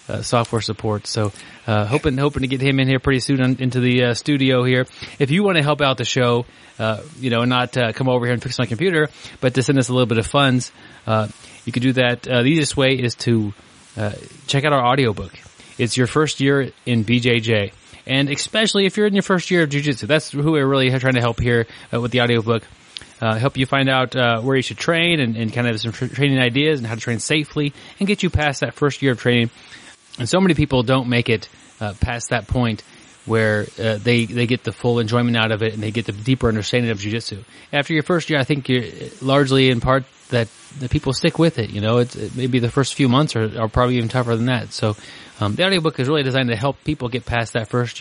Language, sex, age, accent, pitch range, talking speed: English, male, 30-49, American, 115-140 Hz, 250 wpm